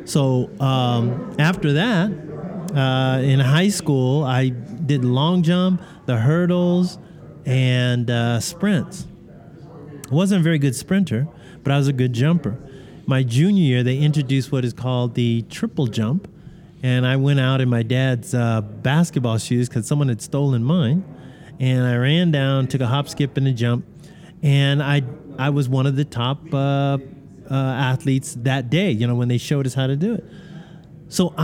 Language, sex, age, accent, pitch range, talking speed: English, male, 30-49, American, 125-165 Hz, 170 wpm